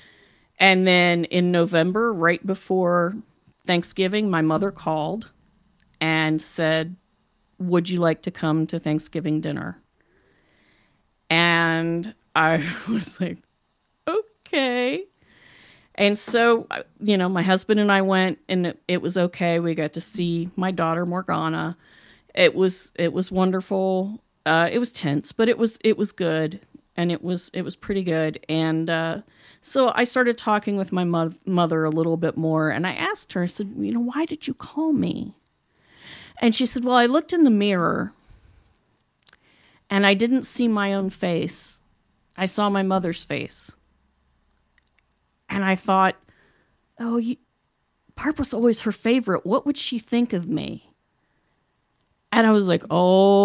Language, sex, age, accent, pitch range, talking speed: English, female, 40-59, American, 165-225 Hz, 150 wpm